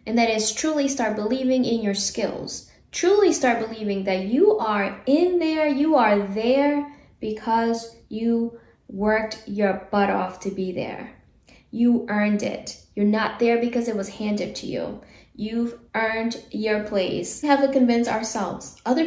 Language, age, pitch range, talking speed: English, 10-29, 200-235 Hz, 160 wpm